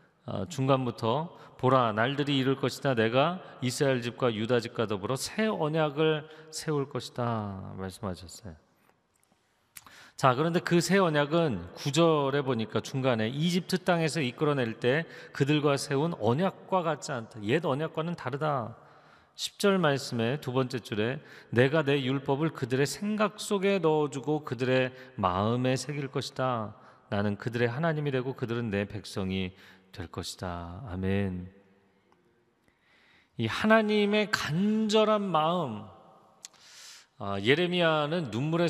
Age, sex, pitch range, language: 40-59, male, 115-155 Hz, Korean